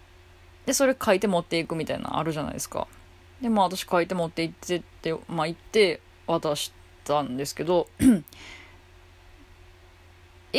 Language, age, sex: Japanese, 20-39, female